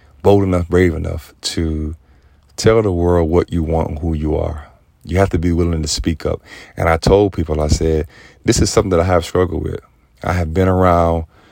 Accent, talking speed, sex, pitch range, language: American, 215 wpm, male, 80-95 Hz, English